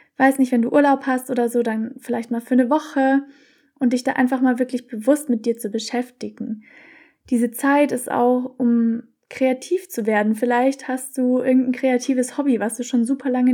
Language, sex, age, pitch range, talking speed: German, female, 20-39, 235-265 Hz, 195 wpm